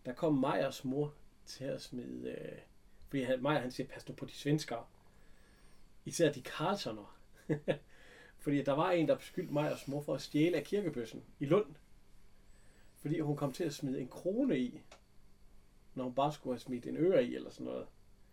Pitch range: 125-175 Hz